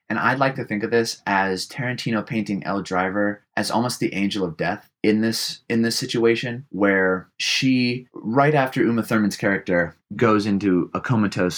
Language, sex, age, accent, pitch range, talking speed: English, male, 20-39, American, 95-115 Hz, 175 wpm